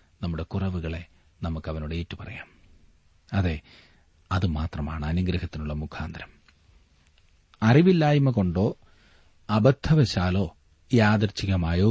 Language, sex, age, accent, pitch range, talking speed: Malayalam, male, 40-59, native, 80-120 Hz, 65 wpm